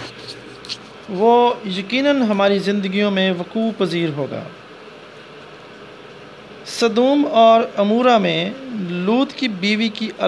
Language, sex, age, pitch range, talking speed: English, male, 40-59, 190-230 Hz, 95 wpm